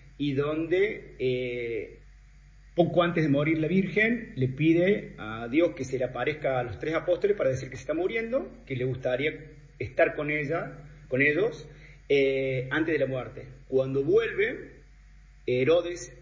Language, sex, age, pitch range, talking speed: Spanish, male, 40-59, 130-170 Hz, 160 wpm